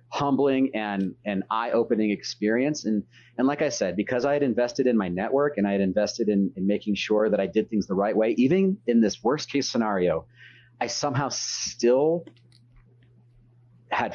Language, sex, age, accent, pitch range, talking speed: English, male, 30-49, American, 105-140 Hz, 180 wpm